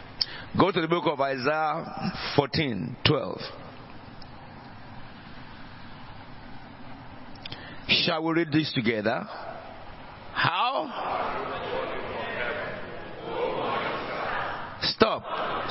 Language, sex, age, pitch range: English, male, 50-69, 130-170 Hz